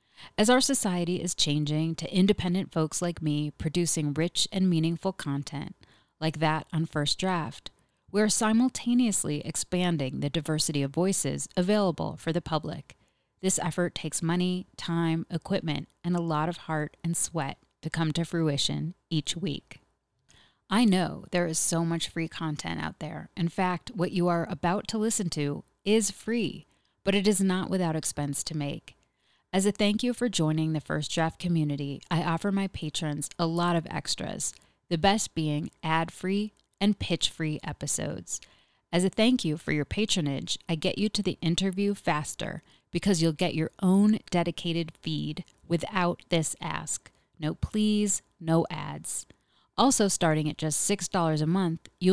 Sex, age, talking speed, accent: female, 30-49, 165 wpm, American